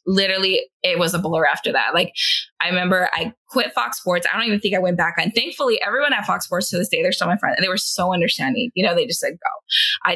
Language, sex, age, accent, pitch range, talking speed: English, female, 20-39, American, 175-220 Hz, 265 wpm